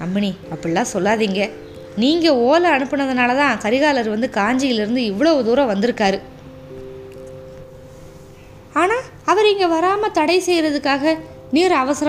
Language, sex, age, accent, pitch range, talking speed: Tamil, female, 20-39, native, 210-285 Hz, 105 wpm